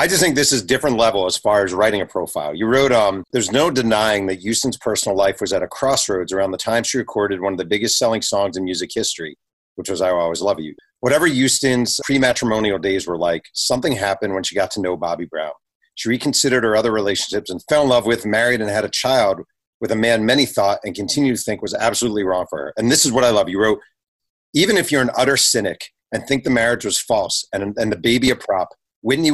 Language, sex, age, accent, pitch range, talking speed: English, male, 40-59, American, 105-130 Hz, 245 wpm